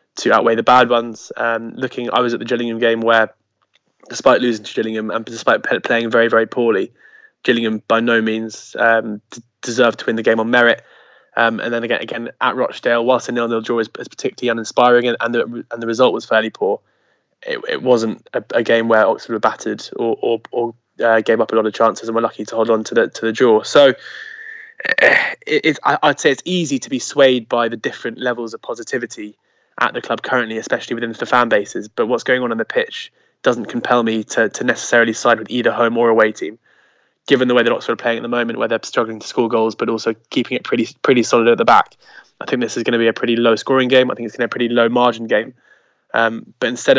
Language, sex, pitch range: English, male, 115-125 Hz